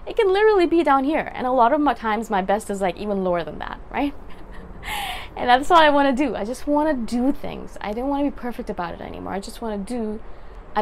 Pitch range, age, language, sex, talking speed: 190-255 Hz, 20-39, English, female, 275 wpm